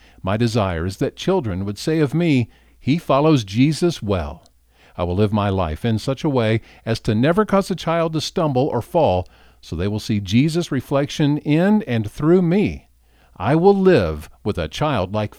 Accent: American